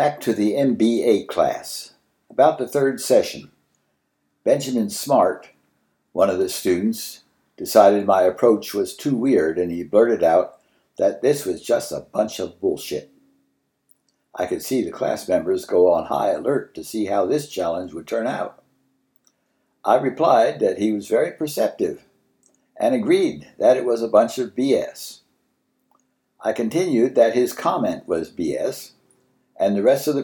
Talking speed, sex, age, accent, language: 155 wpm, male, 60-79, American, English